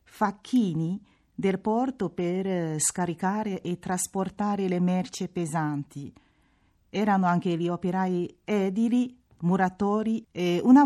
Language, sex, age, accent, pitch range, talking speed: Italian, female, 40-59, native, 170-205 Hz, 100 wpm